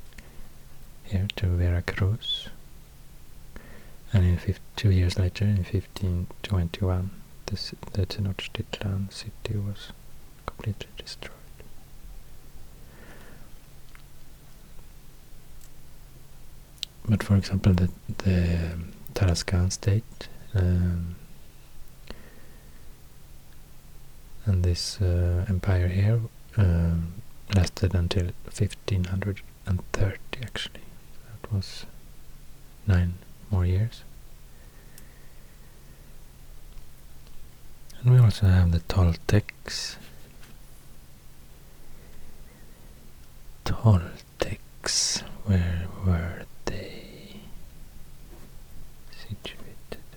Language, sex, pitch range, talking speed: English, male, 85-100 Hz, 65 wpm